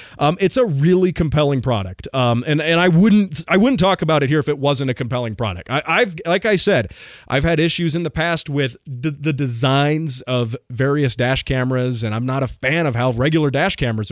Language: English